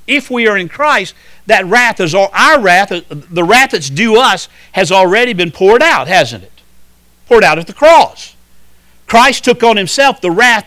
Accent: American